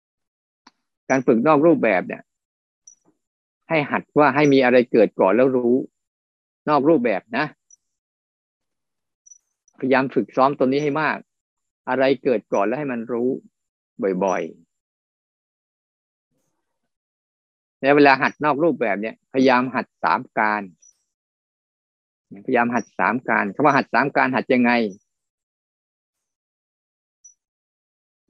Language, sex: Thai, male